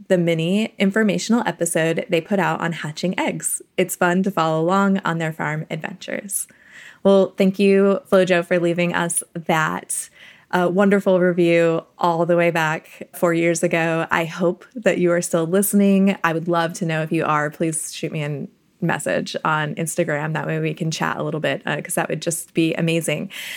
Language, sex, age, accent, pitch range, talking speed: English, female, 20-39, American, 170-200 Hz, 185 wpm